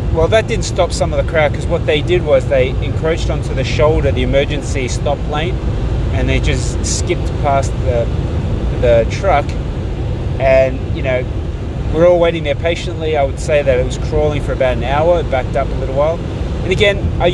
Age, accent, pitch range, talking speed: 20-39, Australian, 110-135 Hz, 205 wpm